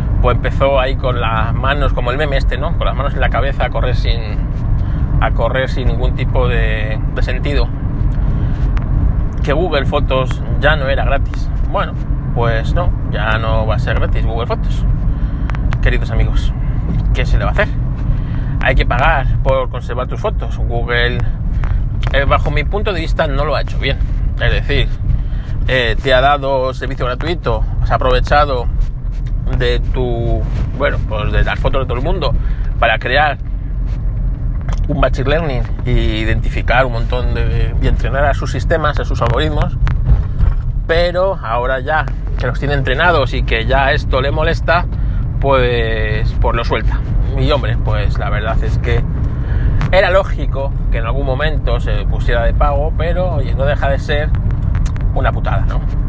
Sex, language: male, Spanish